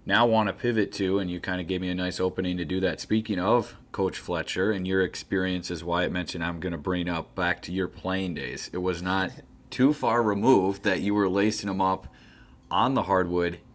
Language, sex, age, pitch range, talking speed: English, male, 30-49, 90-100 Hz, 225 wpm